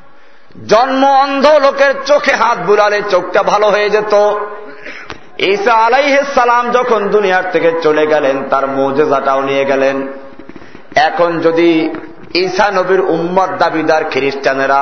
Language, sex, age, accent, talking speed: Bengali, male, 50-69, native, 105 wpm